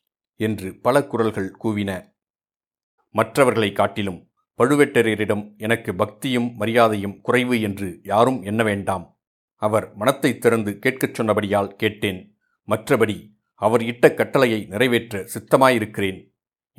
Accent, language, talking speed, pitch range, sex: native, Tamil, 95 wpm, 105-125 Hz, male